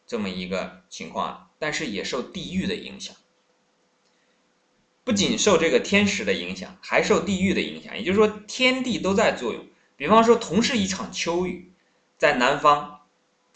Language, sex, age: Chinese, male, 20-39